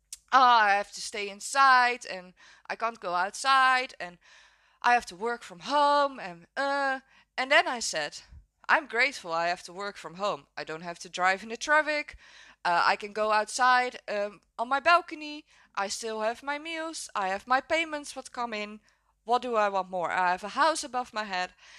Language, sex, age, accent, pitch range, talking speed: English, female, 20-39, Dutch, 190-260 Hz, 200 wpm